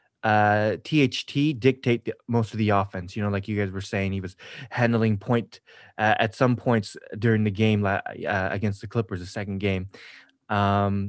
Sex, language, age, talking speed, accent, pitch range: male, English, 20-39, 185 wpm, American, 100-125 Hz